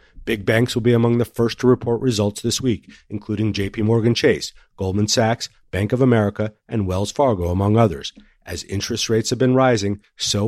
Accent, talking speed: American, 190 wpm